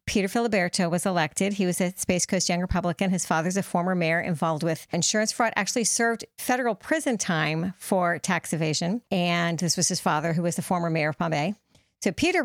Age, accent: 50-69, American